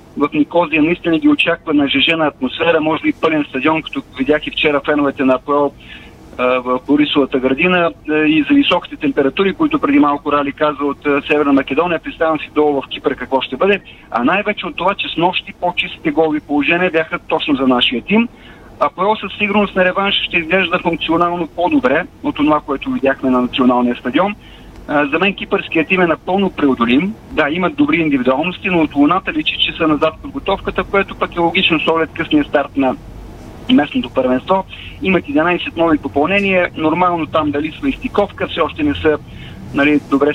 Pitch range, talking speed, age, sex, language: 145-180 Hz, 180 wpm, 40-59, male, Bulgarian